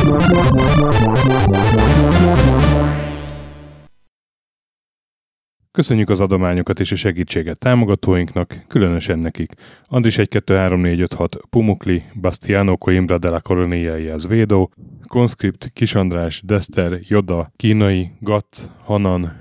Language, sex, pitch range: Hungarian, male, 90-105 Hz